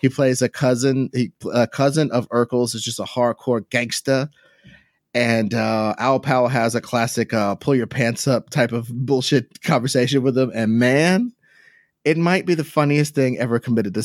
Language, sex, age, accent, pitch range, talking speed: English, male, 30-49, American, 120-165 Hz, 185 wpm